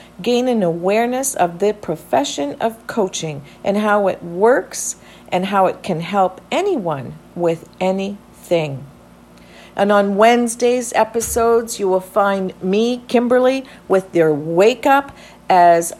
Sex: female